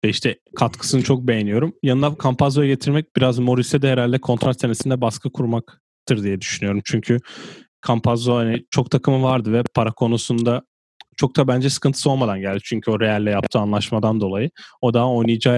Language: Turkish